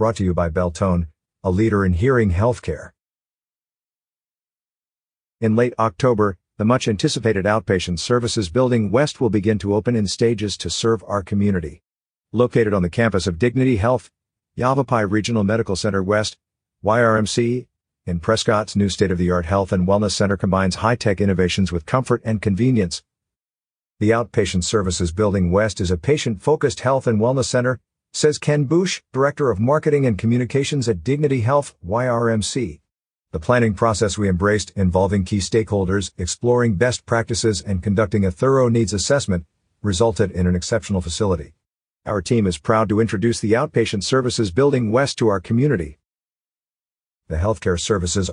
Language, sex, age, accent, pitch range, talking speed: English, male, 50-69, American, 95-120 Hz, 150 wpm